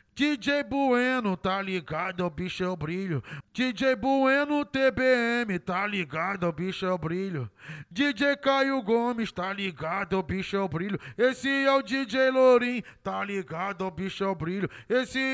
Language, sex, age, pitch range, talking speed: English, male, 20-39, 180-260 Hz, 160 wpm